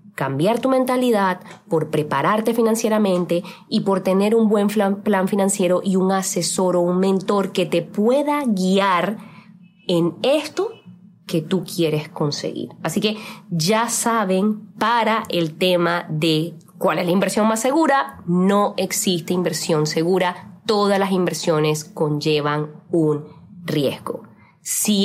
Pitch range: 175-240 Hz